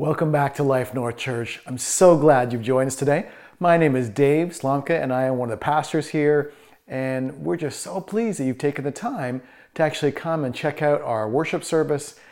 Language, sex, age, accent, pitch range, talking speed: English, male, 40-59, American, 130-160 Hz, 220 wpm